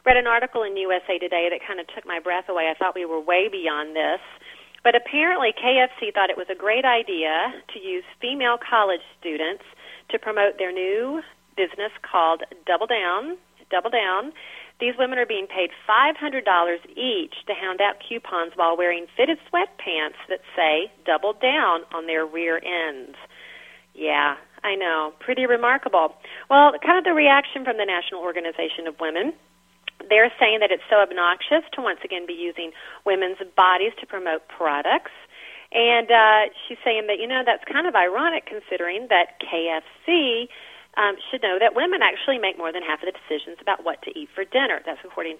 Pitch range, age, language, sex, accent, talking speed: 170-245 Hz, 40-59, English, female, American, 180 wpm